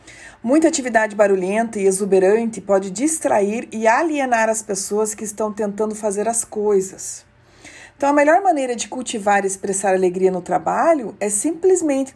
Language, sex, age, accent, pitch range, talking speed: Portuguese, female, 40-59, Brazilian, 195-255 Hz, 150 wpm